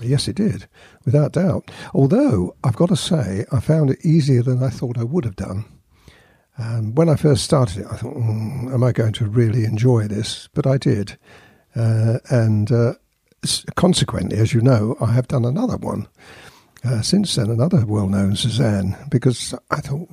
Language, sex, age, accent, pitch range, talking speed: English, male, 50-69, British, 115-145 Hz, 180 wpm